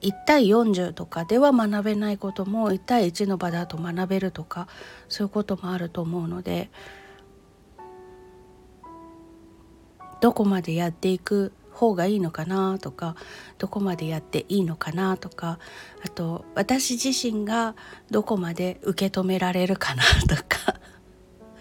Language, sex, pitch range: Japanese, female, 170-215 Hz